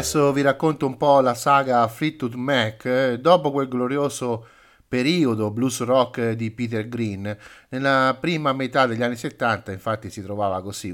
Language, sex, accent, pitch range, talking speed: Italian, male, native, 105-130 Hz, 150 wpm